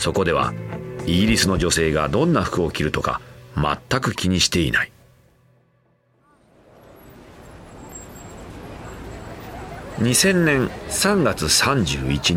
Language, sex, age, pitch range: Japanese, male, 40-59, 80-115 Hz